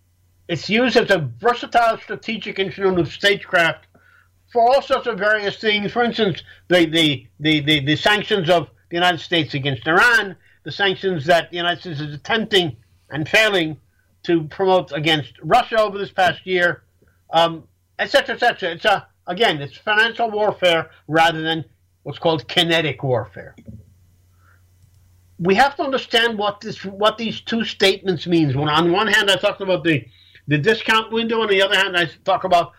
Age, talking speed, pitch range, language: 50-69, 170 wpm, 130-200 Hz, English